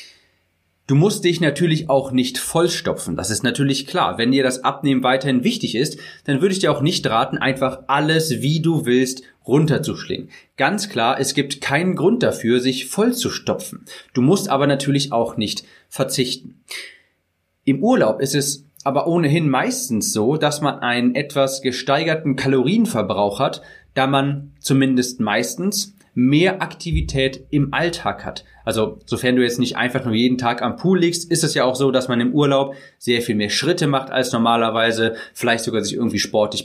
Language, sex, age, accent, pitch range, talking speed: German, male, 30-49, German, 115-145 Hz, 175 wpm